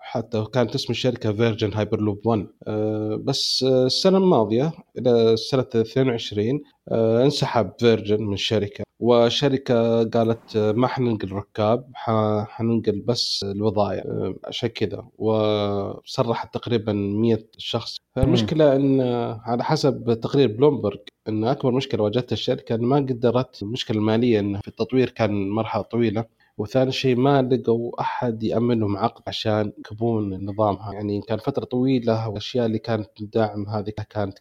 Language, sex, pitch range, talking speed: Arabic, male, 105-125 Hz, 135 wpm